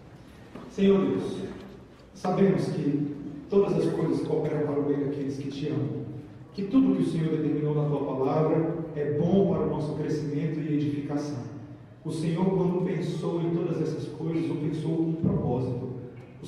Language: Portuguese